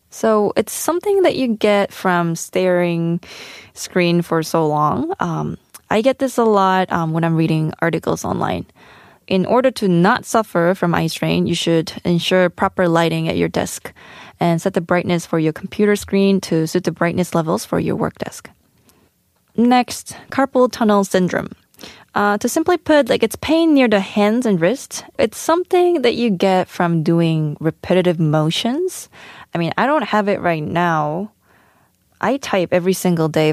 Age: 20-39